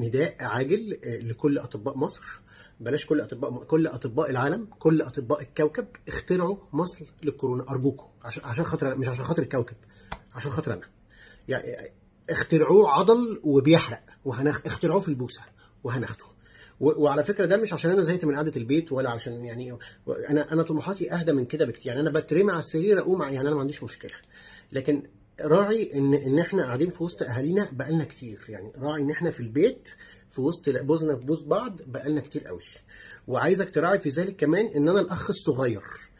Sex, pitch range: male, 135-175 Hz